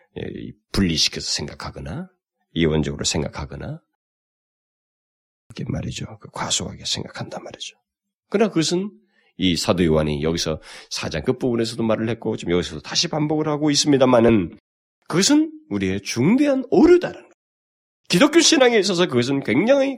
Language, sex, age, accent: Korean, male, 40-59, native